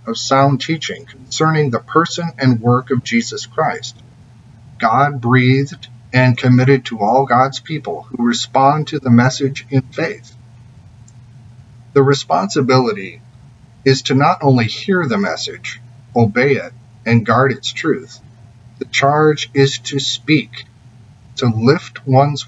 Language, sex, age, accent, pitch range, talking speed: English, male, 40-59, American, 120-135 Hz, 130 wpm